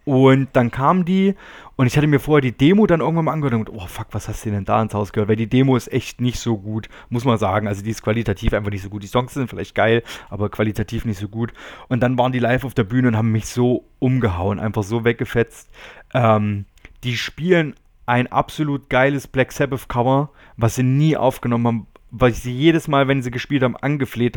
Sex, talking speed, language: male, 235 wpm, German